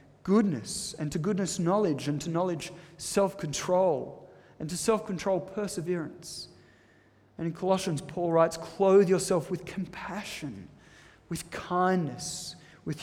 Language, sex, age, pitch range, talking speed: English, male, 30-49, 140-185 Hz, 115 wpm